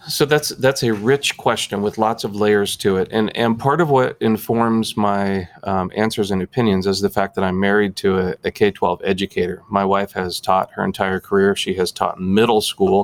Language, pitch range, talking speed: English, 95-115 Hz, 210 wpm